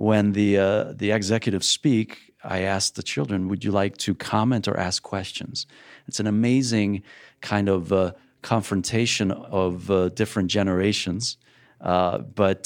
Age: 50-69